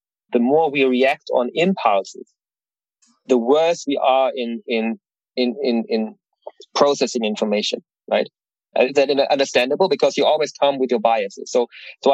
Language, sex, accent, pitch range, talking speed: English, male, German, 125-160 Hz, 150 wpm